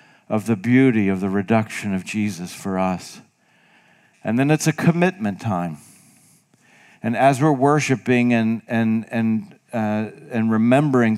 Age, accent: 50-69, American